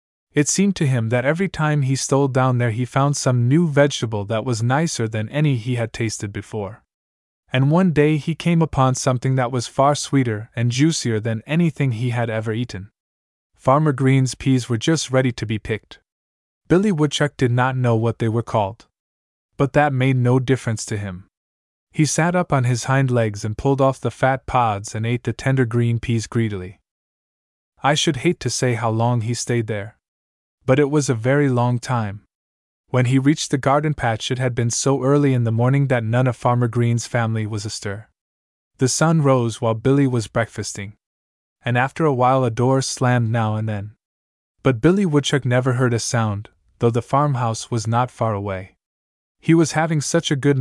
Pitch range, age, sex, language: 110-135 Hz, 20-39, male, English